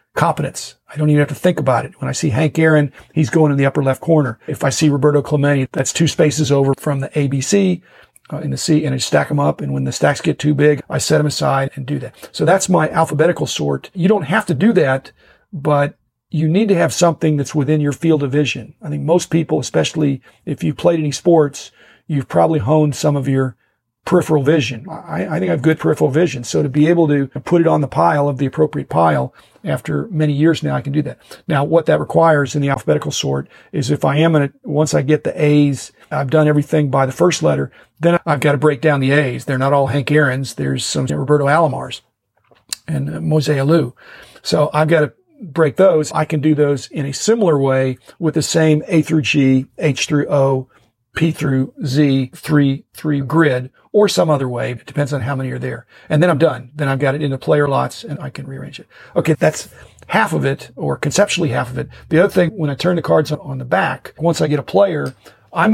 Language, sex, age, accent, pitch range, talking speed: English, male, 40-59, American, 140-160 Hz, 235 wpm